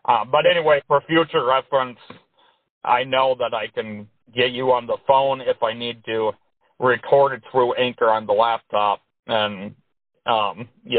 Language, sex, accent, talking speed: English, male, American, 165 wpm